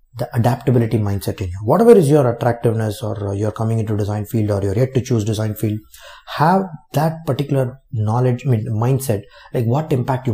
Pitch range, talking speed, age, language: 105-135 Hz, 180 wpm, 20-39, English